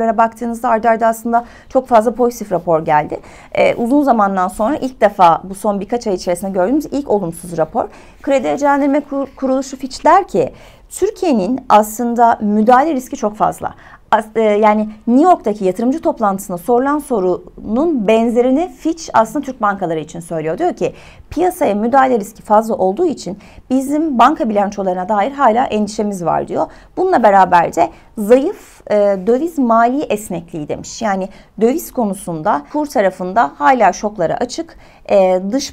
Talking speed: 150 wpm